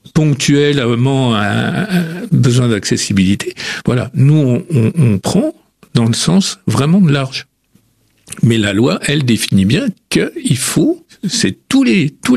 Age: 50-69